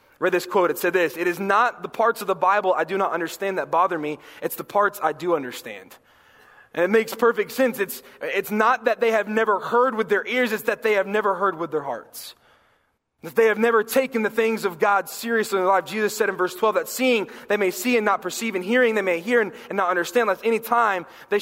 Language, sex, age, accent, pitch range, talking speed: English, male, 20-39, American, 175-220 Hz, 255 wpm